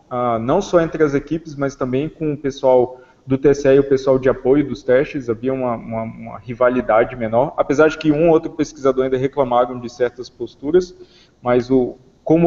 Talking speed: 195 wpm